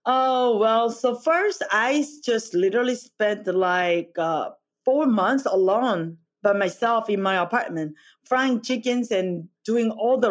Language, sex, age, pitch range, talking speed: English, female, 30-49, 200-265 Hz, 140 wpm